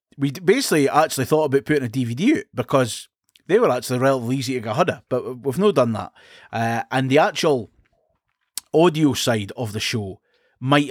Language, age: English, 20-39